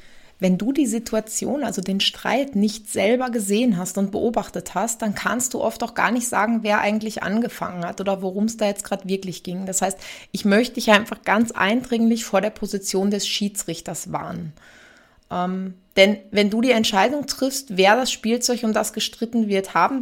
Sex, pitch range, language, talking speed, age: female, 190-225 Hz, German, 190 wpm, 20-39